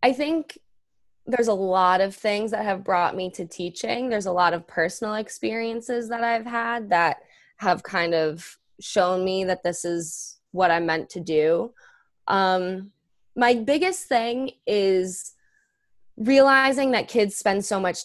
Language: English